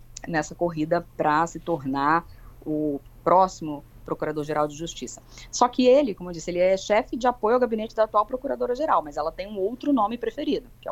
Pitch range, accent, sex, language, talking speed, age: 155-220 Hz, Brazilian, female, Portuguese, 190 wpm, 20-39